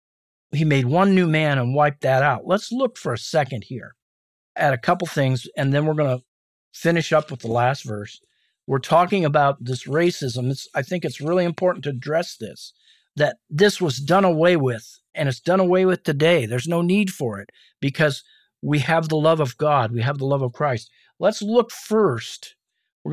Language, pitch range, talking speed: English, 130-175 Hz, 200 wpm